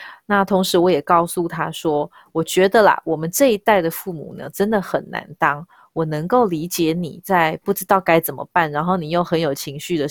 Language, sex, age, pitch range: Chinese, female, 20-39, 160-190 Hz